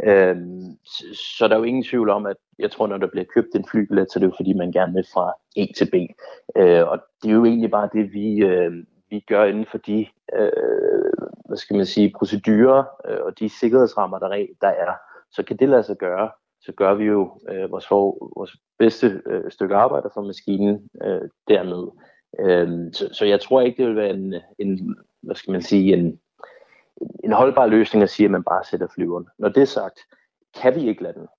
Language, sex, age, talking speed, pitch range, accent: Danish, male, 30-49, 195 wpm, 95-115 Hz, native